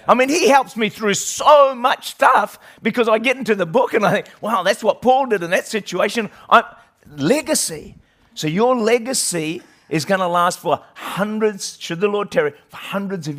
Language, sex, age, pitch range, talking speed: English, male, 50-69, 155-205 Hz, 195 wpm